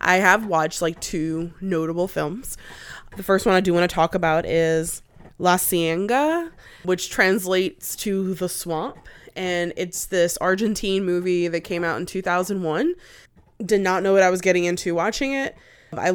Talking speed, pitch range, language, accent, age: 165 wpm, 165-185 Hz, English, American, 20-39